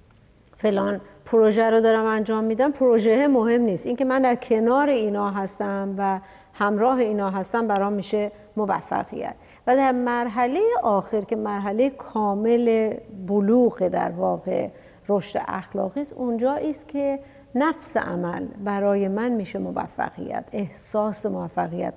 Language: Persian